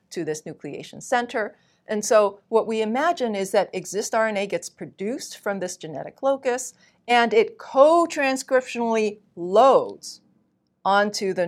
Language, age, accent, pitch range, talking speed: English, 50-69, American, 175-245 Hz, 130 wpm